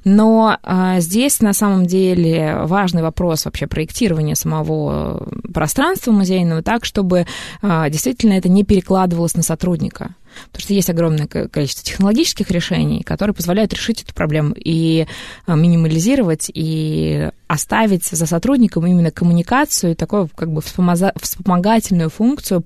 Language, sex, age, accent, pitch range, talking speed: Russian, female, 20-39, native, 165-200 Hz, 120 wpm